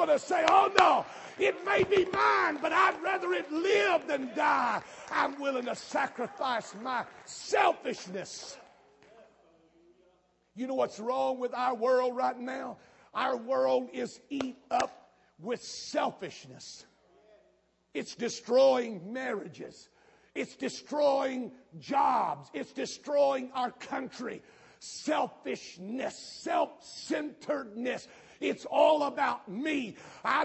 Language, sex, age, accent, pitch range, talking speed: English, male, 50-69, American, 250-310 Hz, 110 wpm